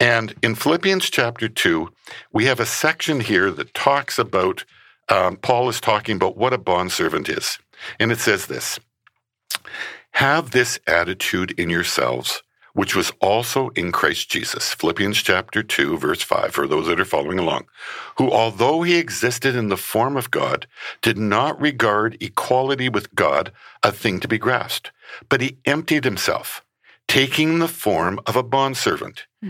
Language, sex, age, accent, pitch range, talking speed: English, male, 60-79, American, 110-140 Hz, 160 wpm